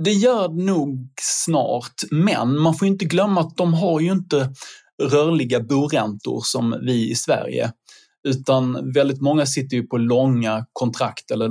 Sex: male